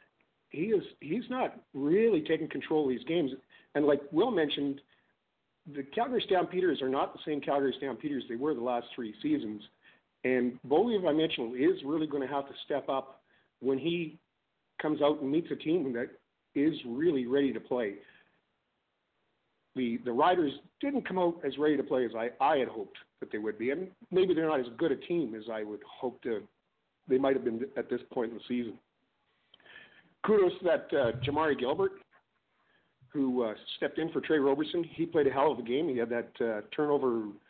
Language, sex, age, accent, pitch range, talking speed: English, male, 50-69, American, 125-165 Hz, 195 wpm